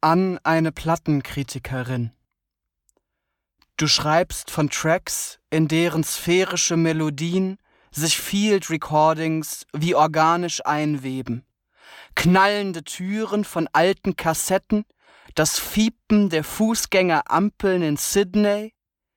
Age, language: 30-49, German